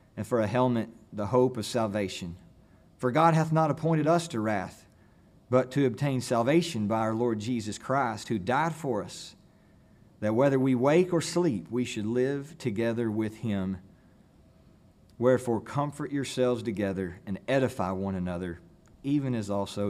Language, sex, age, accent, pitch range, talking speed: English, male, 40-59, American, 110-165 Hz, 155 wpm